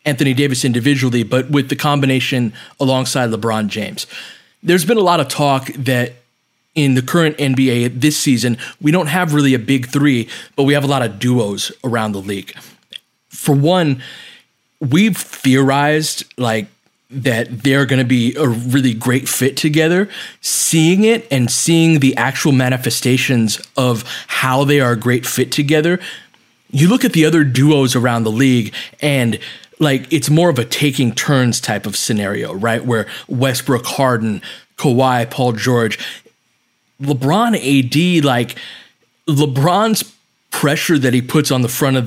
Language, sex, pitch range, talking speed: English, male, 125-150 Hz, 155 wpm